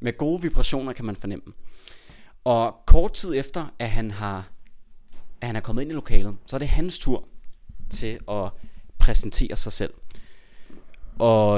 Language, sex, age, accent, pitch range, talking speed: Danish, male, 30-49, native, 100-130 Hz, 160 wpm